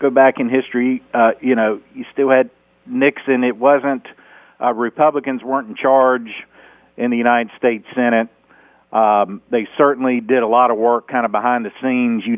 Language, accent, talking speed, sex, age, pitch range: English, American, 180 wpm, male, 50-69, 110-130 Hz